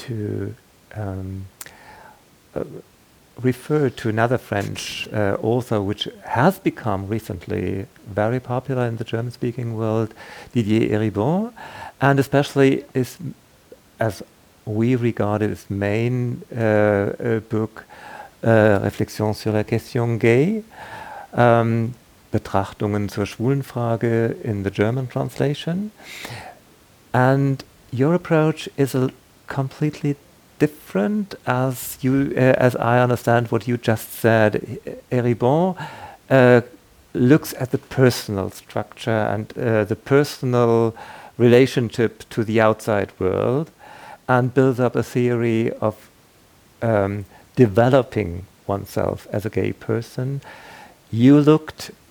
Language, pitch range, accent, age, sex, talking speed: German, 110-130 Hz, German, 50-69, male, 105 wpm